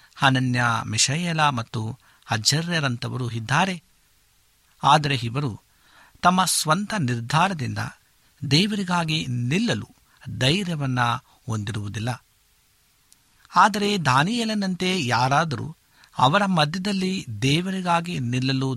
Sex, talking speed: male, 65 wpm